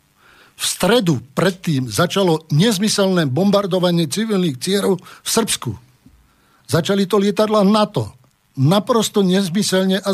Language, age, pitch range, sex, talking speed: Slovak, 60-79, 150-190 Hz, male, 100 wpm